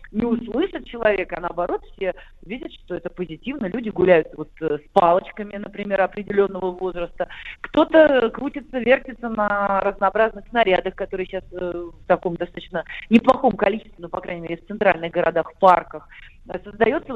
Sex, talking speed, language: female, 140 wpm, Russian